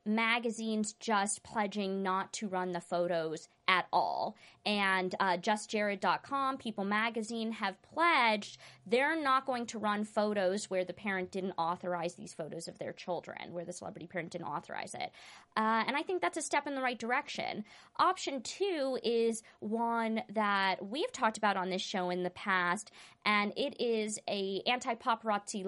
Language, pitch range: English, 185-230 Hz